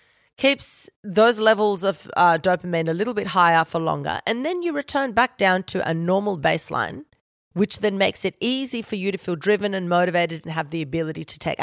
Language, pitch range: English, 160-225 Hz